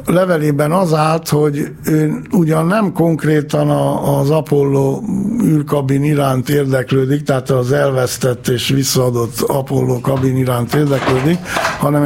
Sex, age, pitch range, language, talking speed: male, 60-79, 125-155 Hz, Hungarian, 115 wpm